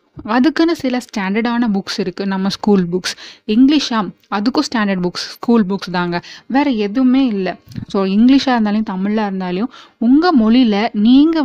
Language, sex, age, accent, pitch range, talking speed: Tamil, female, 20-39, native, 195-235 Hz, 135 wpm